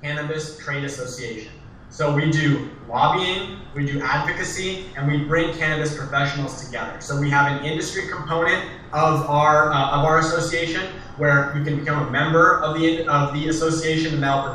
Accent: American